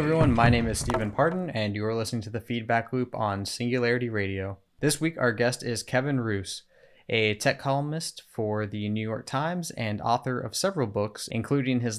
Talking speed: 200 wpm